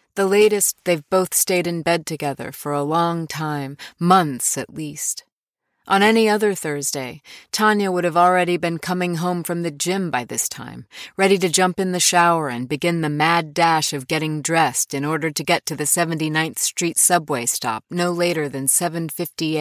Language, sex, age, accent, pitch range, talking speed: English, female, 30-49, American, 140-180 Hz, 185 wpm